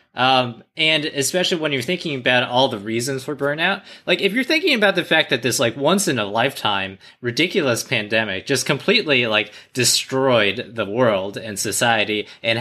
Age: 20-39